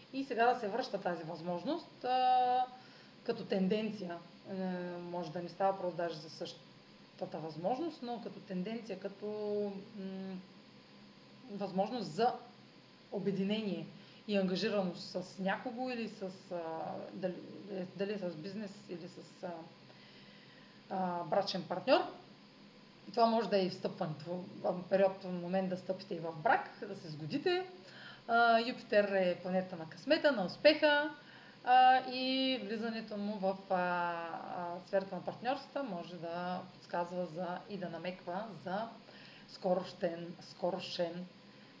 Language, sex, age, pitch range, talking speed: Bulgarian, female, 30-49, 180-225 Hz, 130 wpm